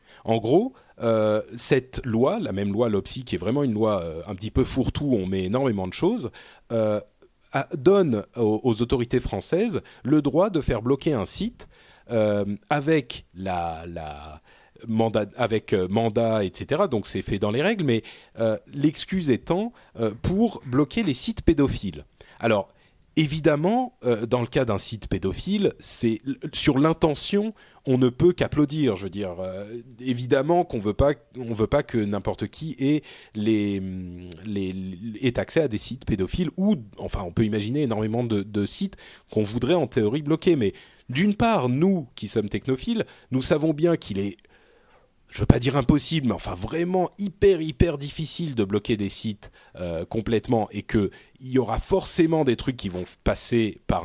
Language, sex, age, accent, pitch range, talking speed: French, male, 30-49, French, 105-155 Hz, 165 wpm